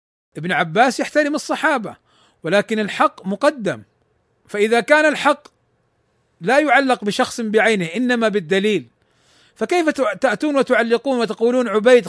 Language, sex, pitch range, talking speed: Arabic, male, 215-275 Hz, 105 wpm